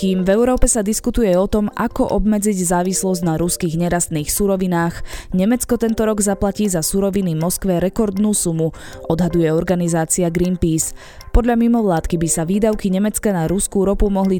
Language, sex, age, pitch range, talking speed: Slovak, female, 20-39, 165-200 Hz, 150 wpm